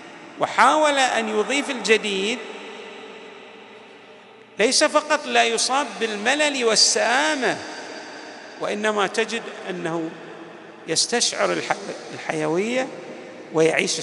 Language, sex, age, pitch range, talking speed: Arabic, male, 50-69, 195-275 Hz, 70 wpm